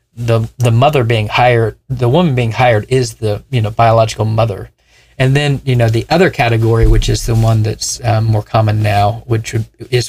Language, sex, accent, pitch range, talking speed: English, male, American, 105-120 Hz, 200 wpm